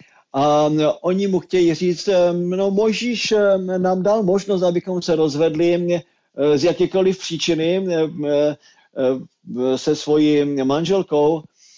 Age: 50-69